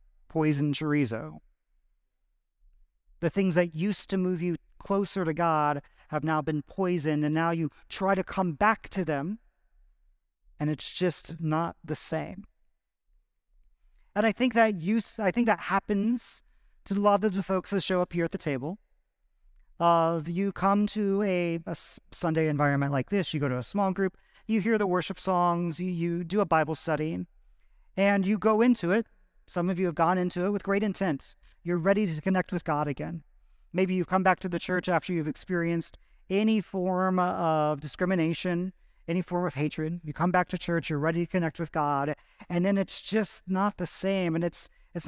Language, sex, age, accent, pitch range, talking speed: English, male, 40-59, American, 155-195 Hz, 190 wpm